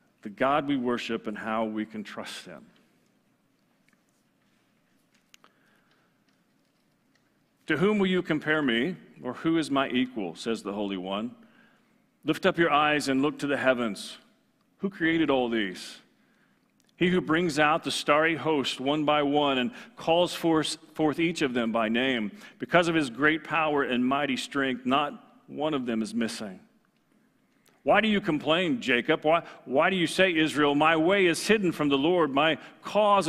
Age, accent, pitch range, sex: 40-59, American, 135-180 Hz, male